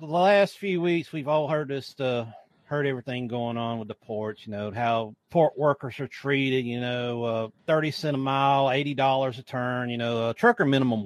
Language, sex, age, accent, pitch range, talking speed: English, male, 40-59, American, 120-160 Hz, 205 wpm